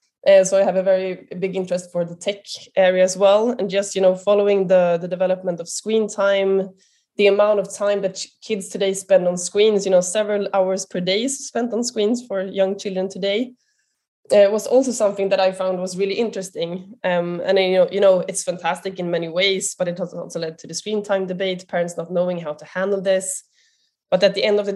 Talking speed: 220 wpm